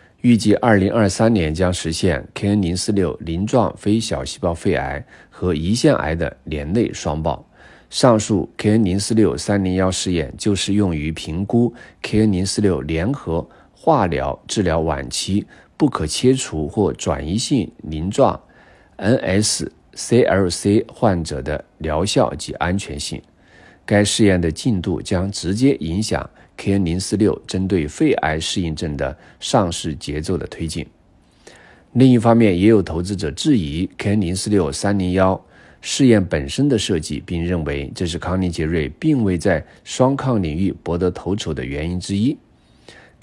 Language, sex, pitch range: Chinese, male, 80-105 Hz